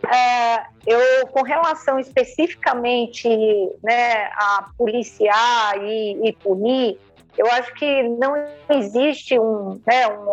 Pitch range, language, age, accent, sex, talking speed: 225-265 Hz, Portuguese, 50-69, Brazilian, female, 110 wpm